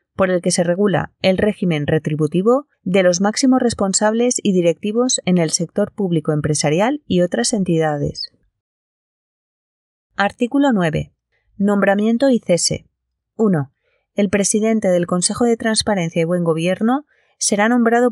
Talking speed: 130 wpm